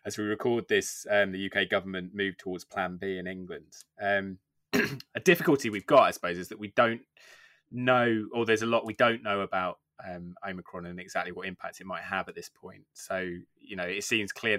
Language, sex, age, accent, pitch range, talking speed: English, male, 20-39, British, 90-105 Hz, 215 wpm